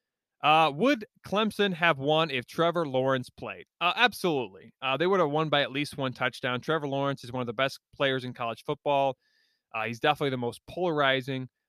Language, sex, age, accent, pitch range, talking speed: English, male, 20-39, American, 120-155 Hz, 195 wpm